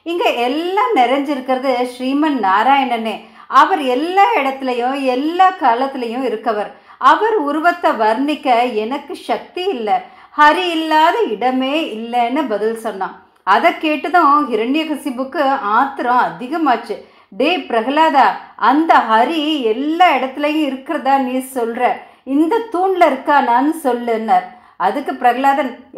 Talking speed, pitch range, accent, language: 100 wpm, 245-310 Hz, native, Tamil